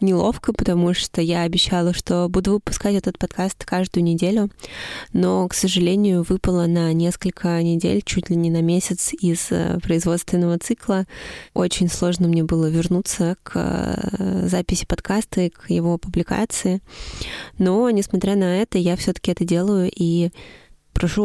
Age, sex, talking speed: 20-39, female, 140 wpm